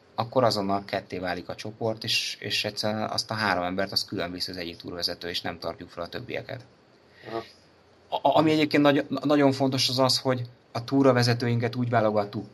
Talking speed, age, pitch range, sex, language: 175 wpm, 30-49, 100-120 Hz, male, Hungarian